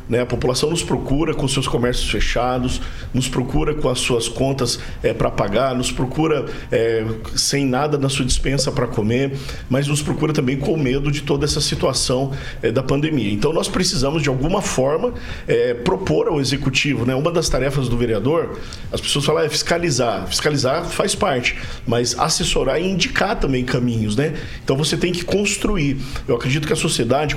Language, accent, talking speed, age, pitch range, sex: Portuguese, Brazilian, 180 wpm, 50-69, 125-155 Hz, male